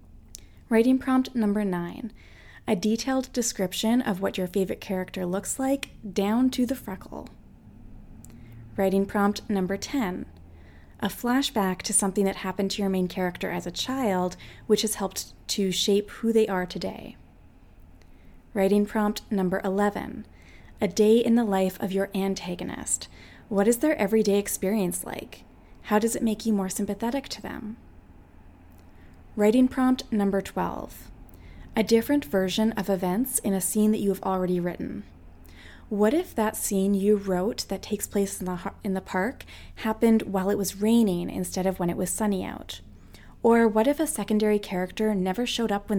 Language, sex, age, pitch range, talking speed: English, female, 20-39, 185-220 Hz, 160 wpm